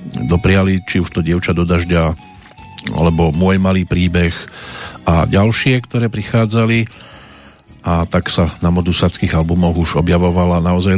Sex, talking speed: male, 125 wpm